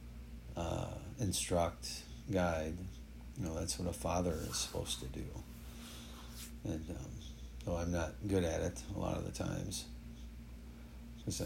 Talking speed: 140 wpm